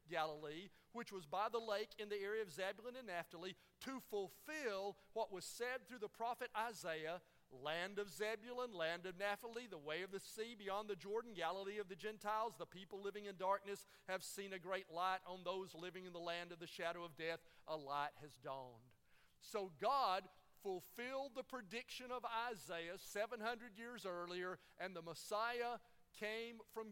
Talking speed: 180 wpm